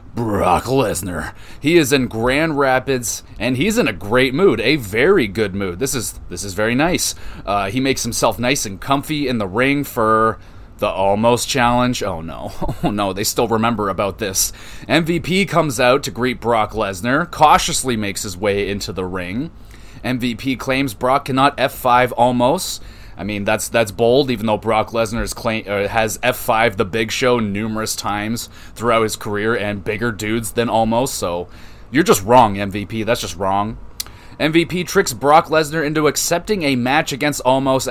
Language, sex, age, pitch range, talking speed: English, male, 30-49, 105-130 Hz, 175 wpm